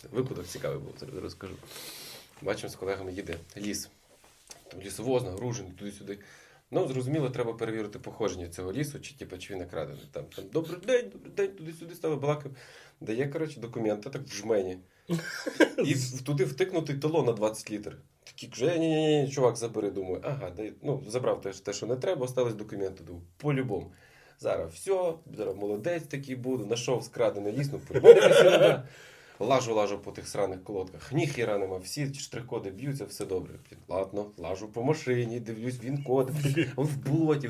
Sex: male